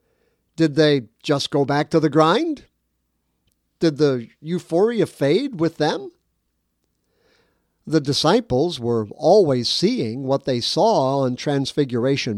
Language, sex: English, male